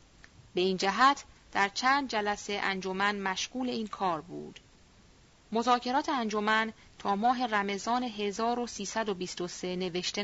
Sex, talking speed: female, 105 wpm